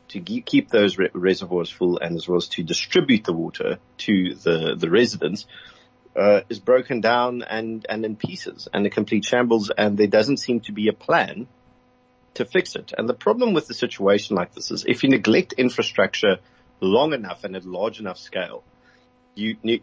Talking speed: 190 wpm